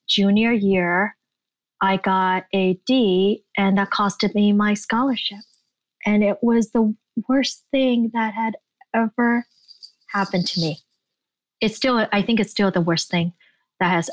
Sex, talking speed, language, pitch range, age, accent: female, 150 wpm, English, 185-230 Hz, 30-49, American